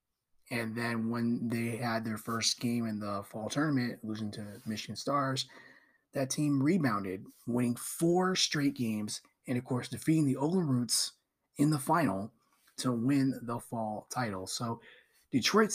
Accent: American